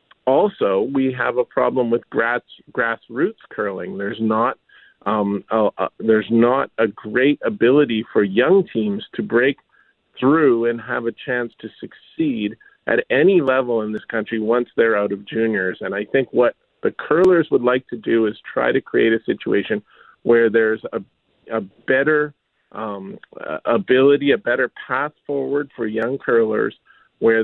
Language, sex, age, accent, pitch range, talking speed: English, male, 40-59, American, 110-135 Hz, 160 wpm